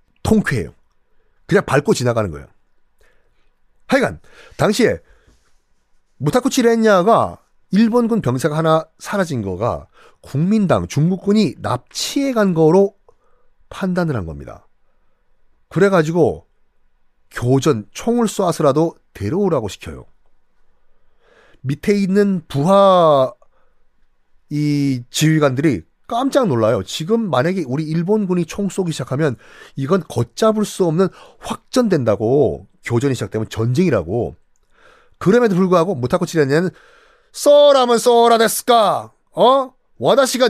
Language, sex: Korean, male